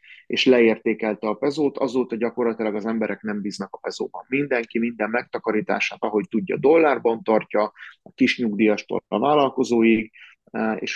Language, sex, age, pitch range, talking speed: Hungarian, male, 30-49, 105-125 Hz, 130 wpm